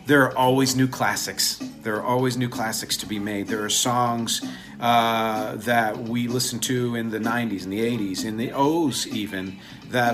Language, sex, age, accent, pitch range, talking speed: English, male, 40-59, American, 115-135 Hz, 190 wpm